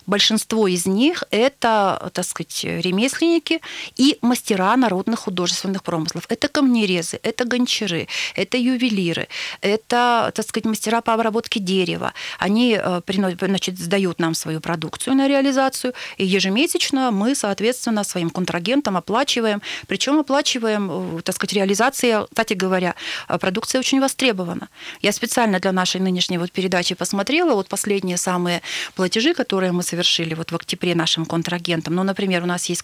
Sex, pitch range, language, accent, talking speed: female, 180-230 Hz, Russian, native, 140 wpm